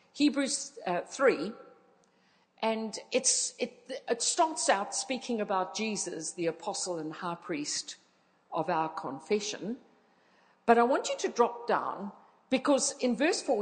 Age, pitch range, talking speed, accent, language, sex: 50-69, 210-295 Hz, 130 wpm, British, English, female